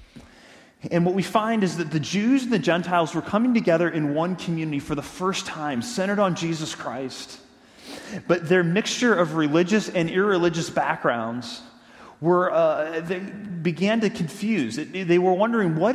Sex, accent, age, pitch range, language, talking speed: male, American, 30-49, 140-185 Hz, English, 160 wpm